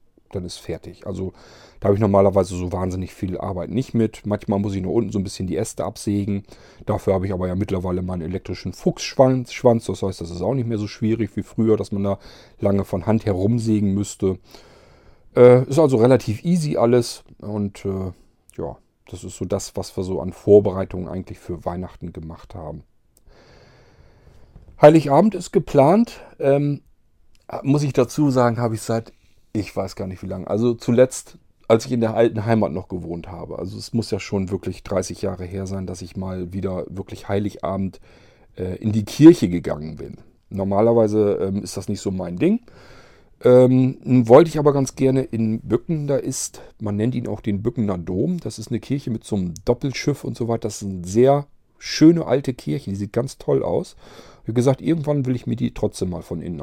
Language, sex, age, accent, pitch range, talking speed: German, male, 40-59, German, 95-120 Hz, 200 wpm